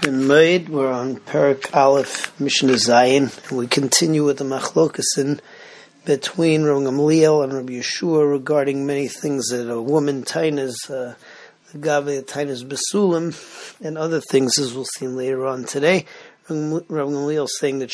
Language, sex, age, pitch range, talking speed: English, male, 40-59, 135-160 Hz, 145 wpm